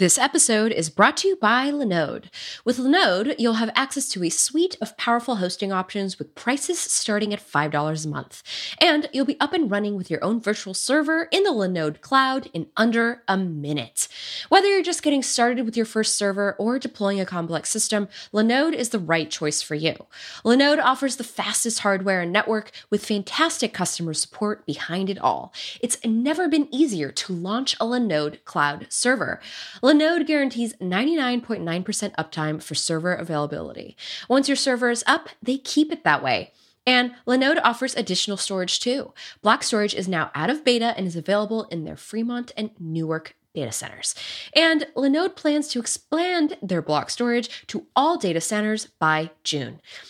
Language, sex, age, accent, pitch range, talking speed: English, female, 20-39, American, 180-265 Hz, 175 wpm